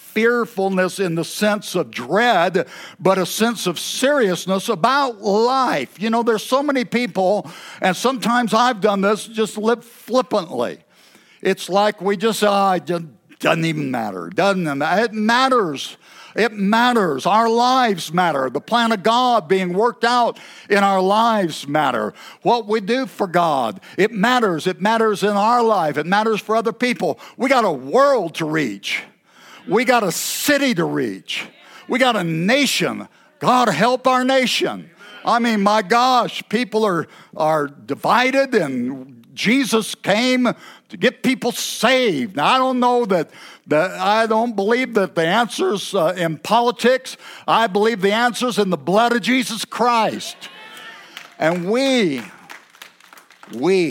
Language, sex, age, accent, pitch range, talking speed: English, male, 60-79, American, 185-240 Hz, 155 wpm